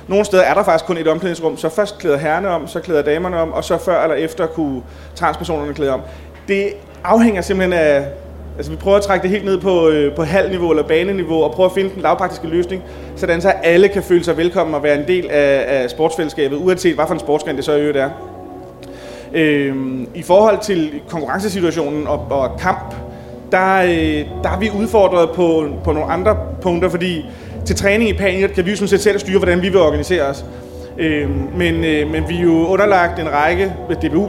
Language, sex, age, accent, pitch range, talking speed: Danish, male, 30-49, native, 145-185 Hz, 200 wpm